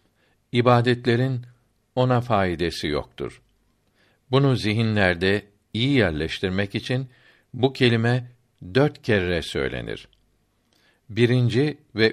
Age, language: 60-79, Turkish